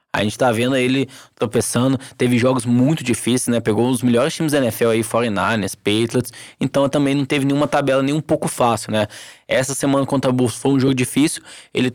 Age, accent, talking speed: 10-29, Brazilian, 210 wpm